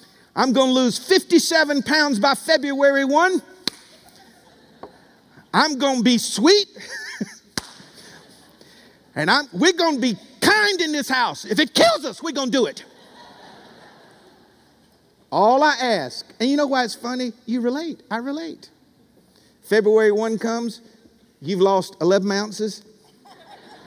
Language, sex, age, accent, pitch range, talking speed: English, male, 50-69, American, 160-255 Hz, 125 wpm